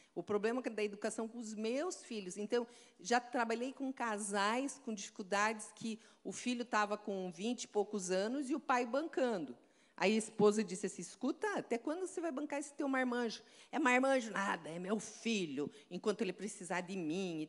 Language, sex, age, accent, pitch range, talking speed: Portuguese, female, 50-69, Brazilian, 205-270 Hz, 185 wpm